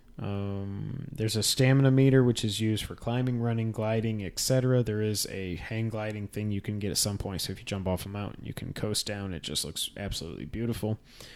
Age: 20-39